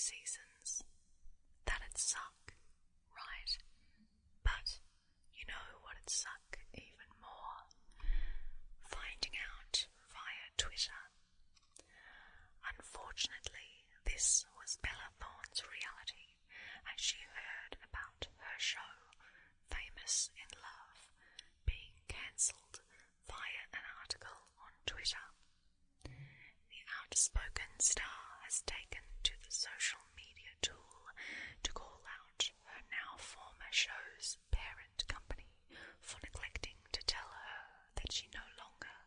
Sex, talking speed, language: female, 100 wpm, English